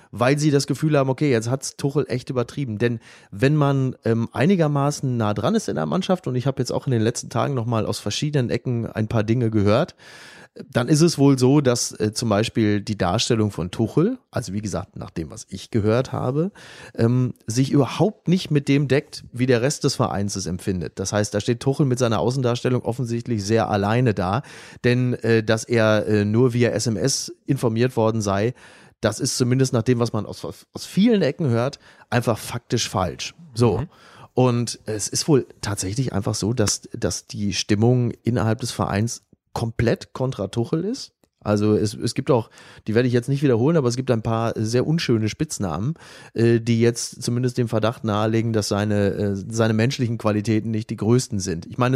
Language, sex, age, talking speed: German, male, 30-49, 200 wpm